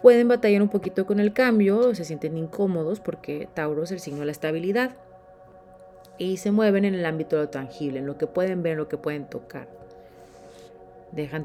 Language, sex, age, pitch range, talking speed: Spanish, female, 30-49, 135-185 Hz, 200 wpm